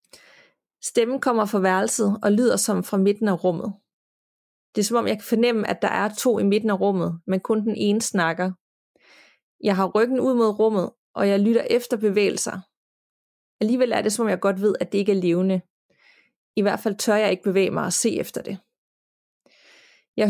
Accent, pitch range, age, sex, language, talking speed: native, 190-230 Hz, 30-49, female, Danish, 200 wpm